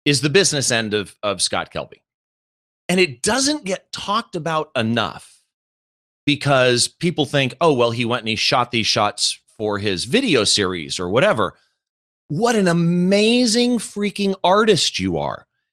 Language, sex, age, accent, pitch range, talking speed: English, male, 40-59, American, 115-175 Hz, 155 wpm